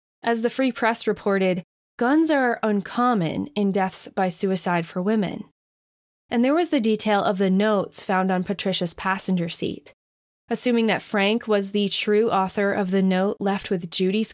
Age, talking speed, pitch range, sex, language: 20-39, 165 wpm, 185-230 Hz, female, English